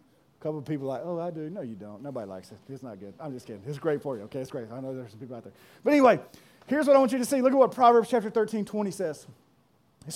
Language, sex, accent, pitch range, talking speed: English, male, American, 215-295 Hz, 300 wpm